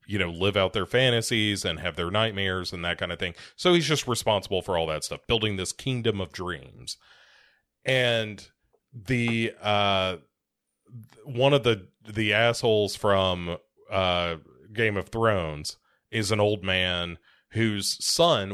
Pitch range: 95-115 Hz